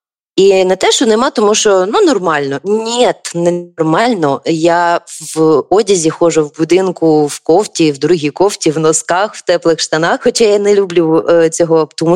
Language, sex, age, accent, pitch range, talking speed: Ukrainian, female, 20-39, native, 160-205 Hz, 175 wpm